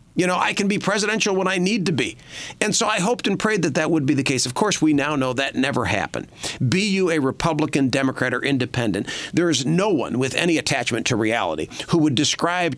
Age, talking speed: 50-69, 235 wpm